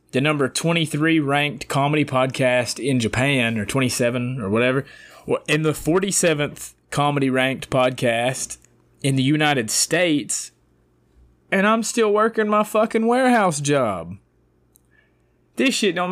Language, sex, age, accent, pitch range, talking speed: English, male, 20-39, American, 105-145 Hz, 125 wpm